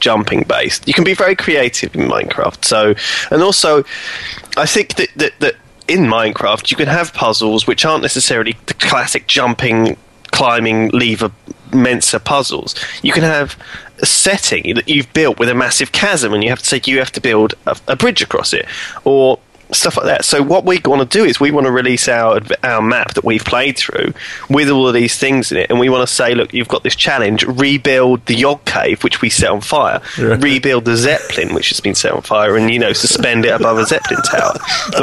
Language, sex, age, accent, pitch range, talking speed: English, male, 20-39, British, 115-150 Hz, 215 wpm